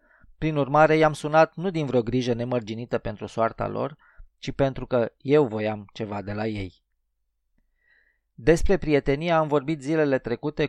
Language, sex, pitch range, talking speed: Romanian, male, 110-140 Hz, 150 wpm